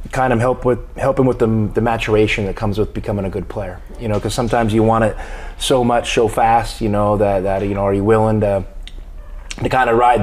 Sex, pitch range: male, 95-115 Hz